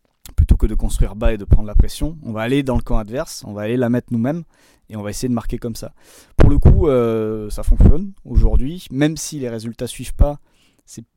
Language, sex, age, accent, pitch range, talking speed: French, male, 20-39, French, 100-130 Hz, 245 wpm